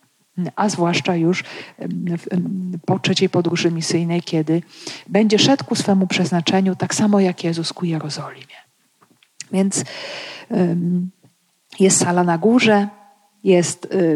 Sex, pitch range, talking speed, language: female, 170-210 Hz, 105 wpm, Polish